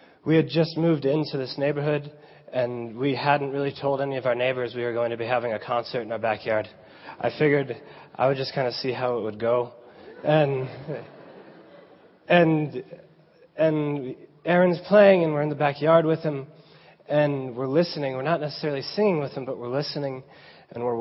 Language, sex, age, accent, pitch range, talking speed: English, male, 20-39, American, 130-160 Hz, 185 wpm